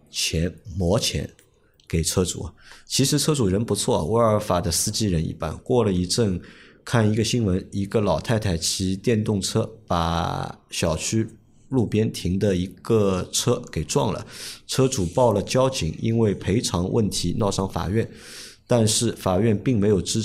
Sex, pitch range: male, 90-110 Hz